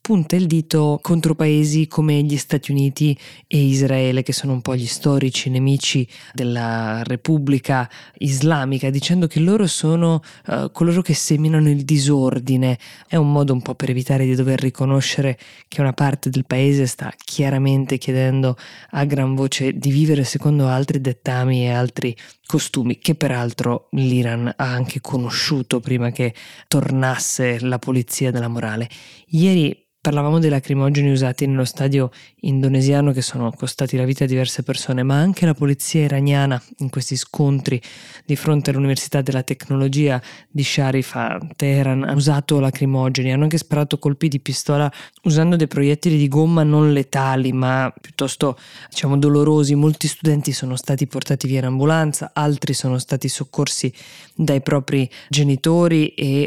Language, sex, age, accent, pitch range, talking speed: Italian, female, 20-39, native, 130-150 Hz, 150 wpm